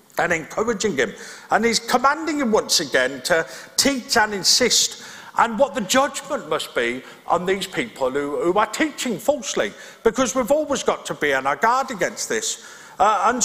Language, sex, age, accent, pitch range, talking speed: English, male, 50-69, British, 165-255 Hz, 180 wpm